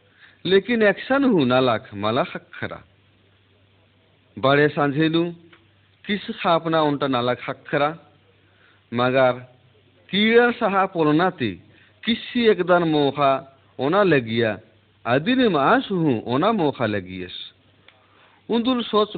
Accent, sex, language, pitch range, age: native, male, Hindi, 110-180 Hz, 50-69